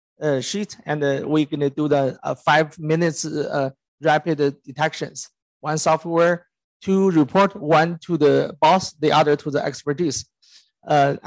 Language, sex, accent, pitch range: English, male, Chinese, 145-170 Hz